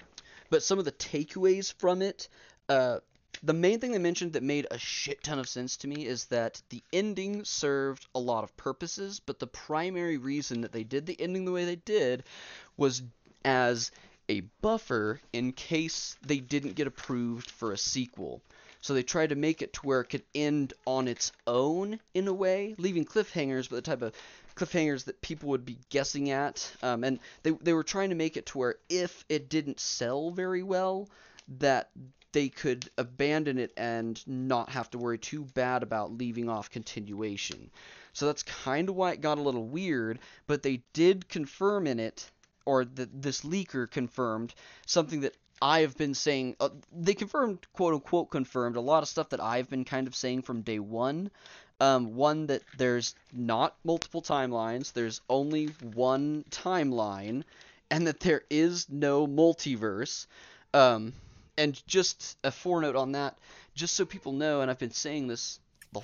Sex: male